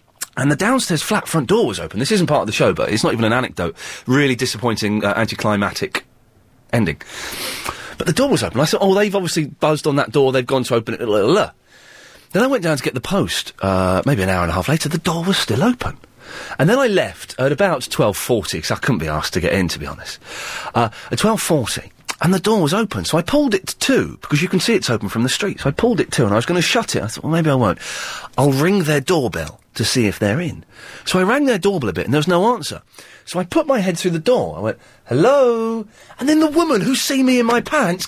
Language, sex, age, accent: English, male, 30-49, British